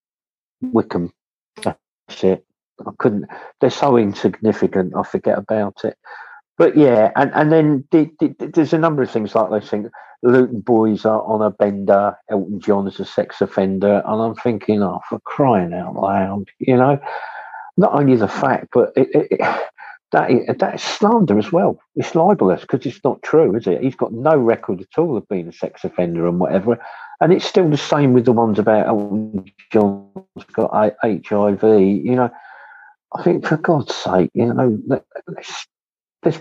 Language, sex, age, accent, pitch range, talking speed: English, male, 50-69, British, 100-125 Hz, 180 wpm